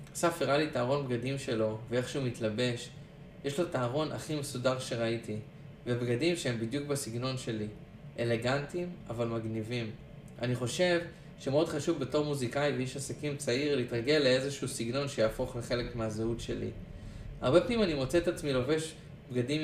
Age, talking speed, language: 20-39, 145 wpm, Hebrew